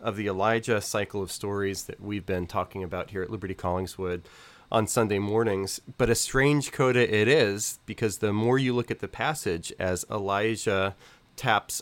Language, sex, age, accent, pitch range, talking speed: English, male, 30-49, American, 95-120 Hz, 180 wpm